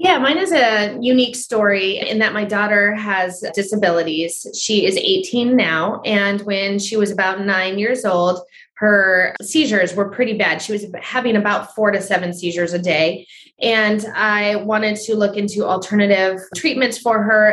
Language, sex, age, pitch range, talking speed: English, female, 20-39, 195-225 Hz, 170 wpm